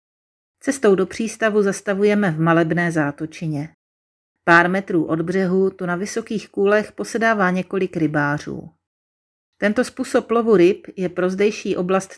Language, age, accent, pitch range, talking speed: Czech, 40-59, native, 165-210 Hz, 130 wpm